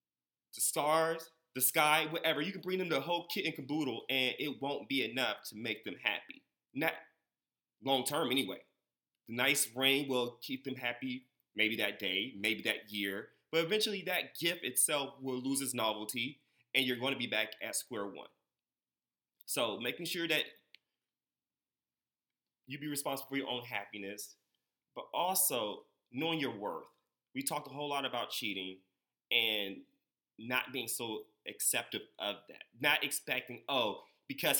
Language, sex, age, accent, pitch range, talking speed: English, male, 30-49, American, 110-145 Hz, 160 wpm